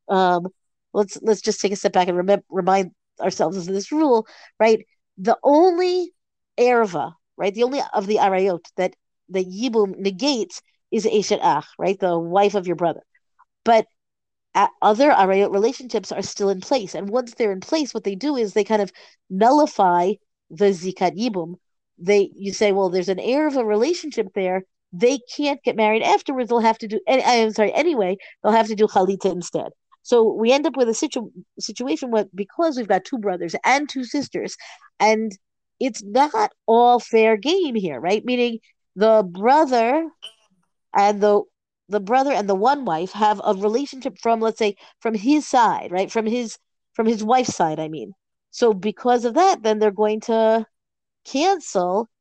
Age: 50-69